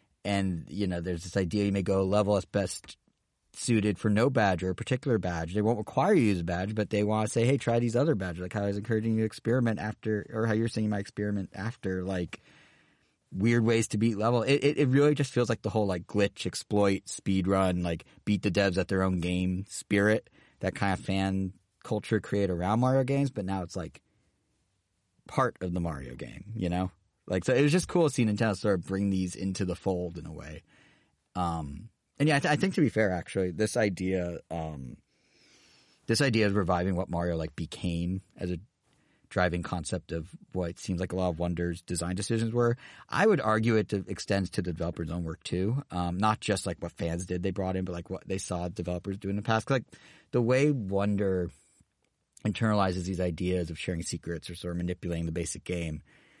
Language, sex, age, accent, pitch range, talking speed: English, male, 30-49, American, 90-110 Hz, 220 wpm